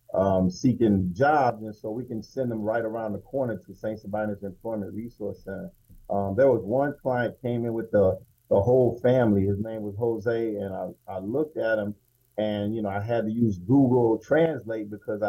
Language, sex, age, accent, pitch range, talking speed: English, male, 40-59, American, 100-125 Hz, 200 wpm